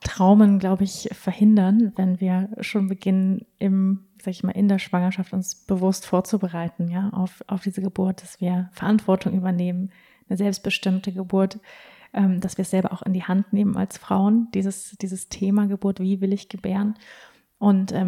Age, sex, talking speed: 30-49, female, 170 wpm